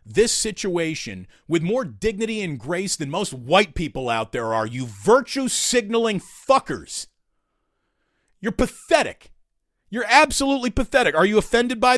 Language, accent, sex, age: English, American, male, 40-59